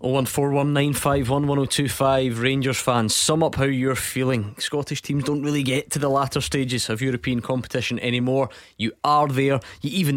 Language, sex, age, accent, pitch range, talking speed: English, male, 20-39, British, 120-140 Hz, 155 wpm